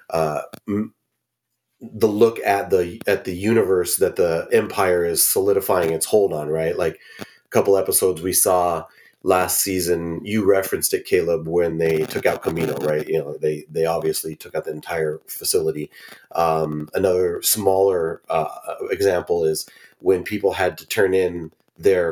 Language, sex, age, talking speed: English, male, 30-49, 155 wpm